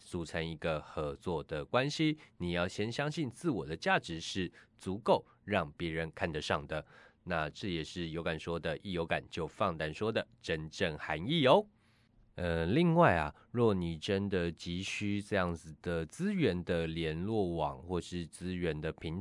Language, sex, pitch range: Chinese, male, 80-115 Hz